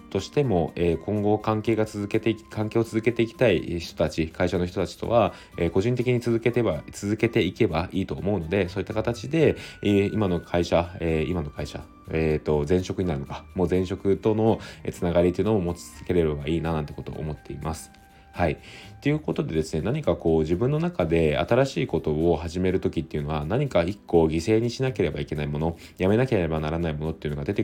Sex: male